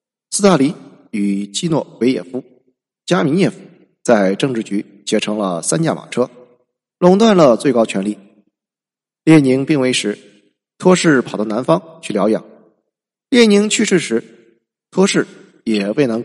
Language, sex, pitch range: Chinese, male, 105-165 Hz